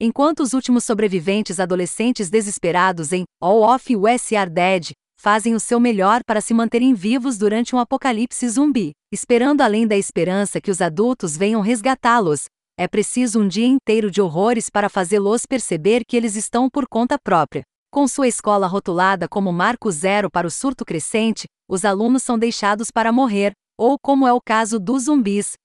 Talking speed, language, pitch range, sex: 170 wpm, Portuguese, 195-245 Hz, female